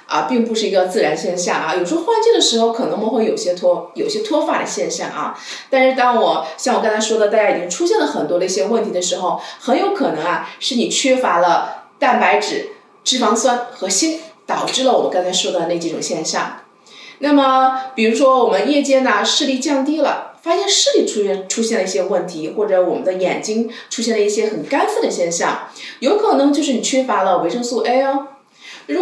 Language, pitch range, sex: Chinese, 215-300 Hz, female